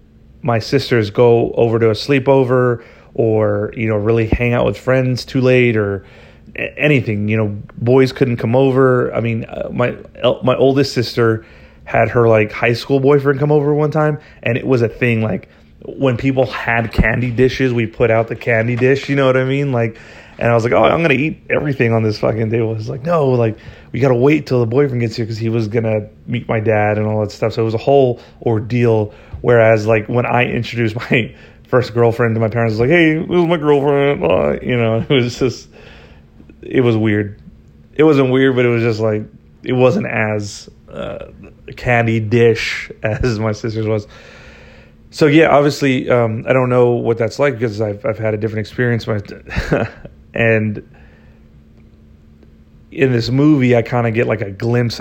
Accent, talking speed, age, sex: American, 205 wpm, 30-49, male